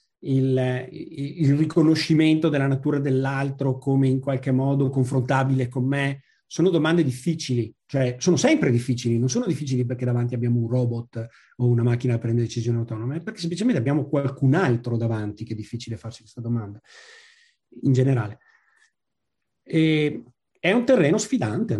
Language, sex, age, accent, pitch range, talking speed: Italian, male, 40-59, native, 125-155 Hz, 155 wpm